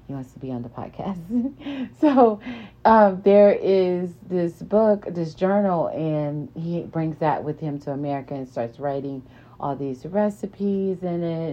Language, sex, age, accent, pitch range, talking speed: English, female, 30-49, American, 125-170 Hz, 160 wpm